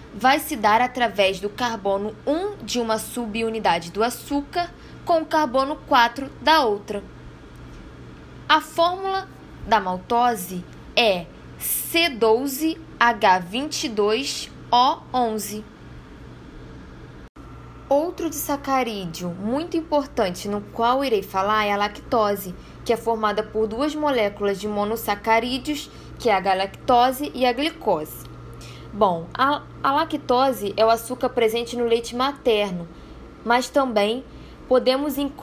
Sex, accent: female, Brazilian